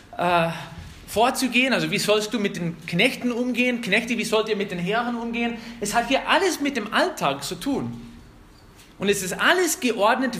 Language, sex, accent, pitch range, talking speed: German, male, German, 170-235 Hz, 185 wpm